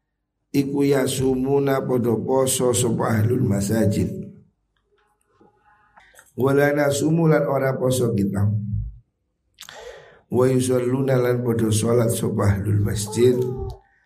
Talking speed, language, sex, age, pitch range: 85 wpm, Indonesian, male, 50-69, 100-125 Hz